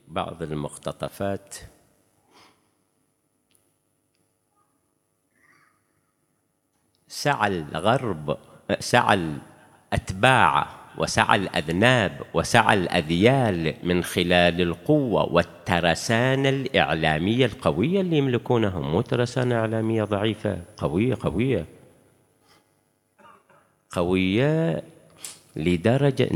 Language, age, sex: Arabic, 50-69, male